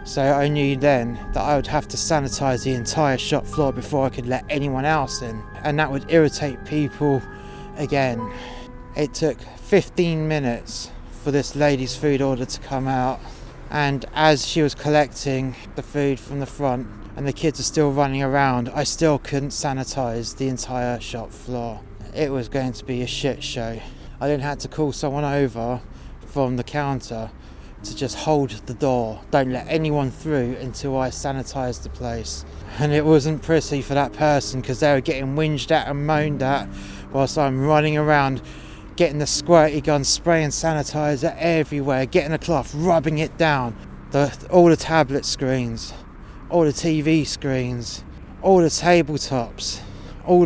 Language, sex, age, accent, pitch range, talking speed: English, male, 20-39, British, 125-150 Hz, 170 wpm